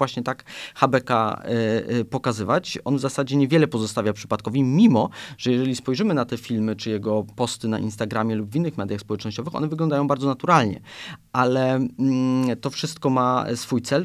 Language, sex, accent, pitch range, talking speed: Polish, male, native, 115-140 Hz, 170 wpm